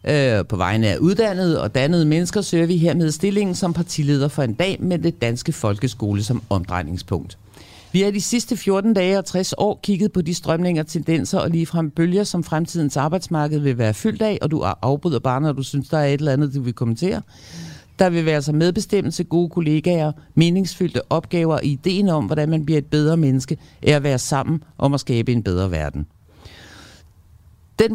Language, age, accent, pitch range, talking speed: Danish, 50-69, native, 125-170 Hz, 195 wpm